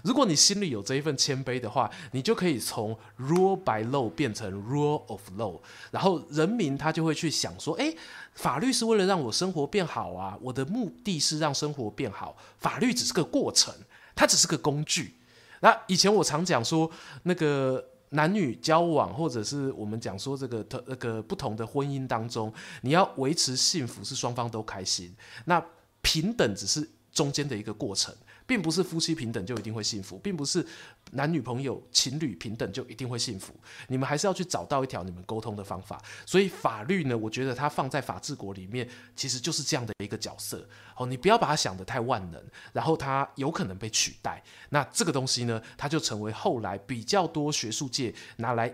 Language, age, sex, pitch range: Chinese, 20-39, male, 115-160 Hz